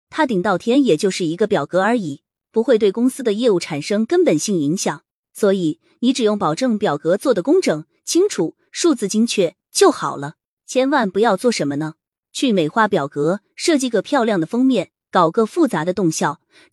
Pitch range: 170-250 Hz